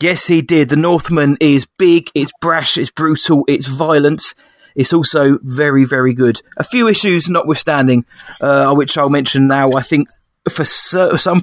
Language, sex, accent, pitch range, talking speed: English, male, British, 130-155 Hz, 165 wpm